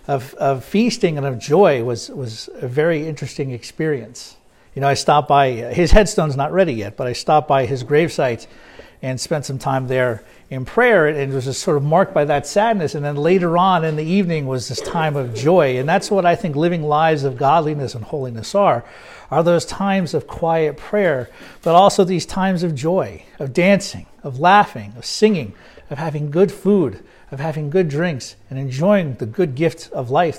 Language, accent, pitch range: English, American, 130-180 Hz